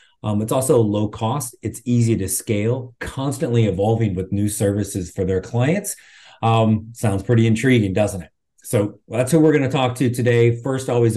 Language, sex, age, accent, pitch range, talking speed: English, male, 30-49, American, 105-130 Hz, 185 wpm